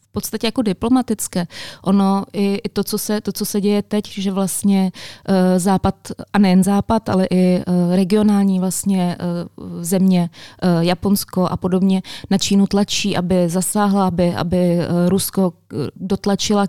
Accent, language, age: native, Czech, 20-39